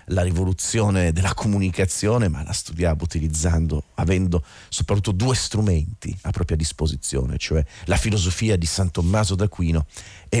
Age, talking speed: 40-59, 135 wpm